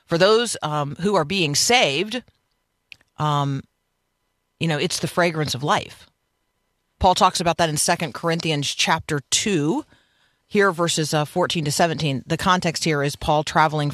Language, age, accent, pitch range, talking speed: English, 40-59, American, 150-185 Hz, 155 wpm